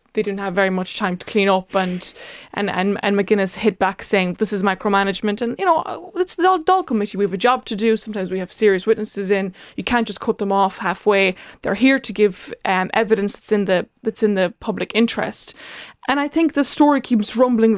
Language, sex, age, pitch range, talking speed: English, female, 20-39, 195-245 Hz, 230 wpm